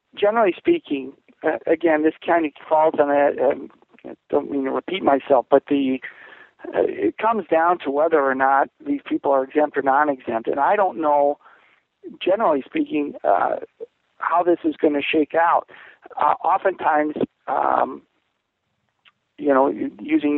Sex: male